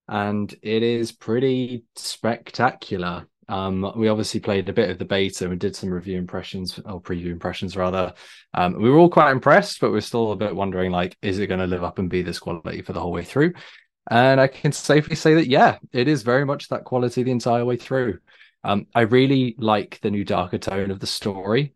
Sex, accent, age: male, British, 20-39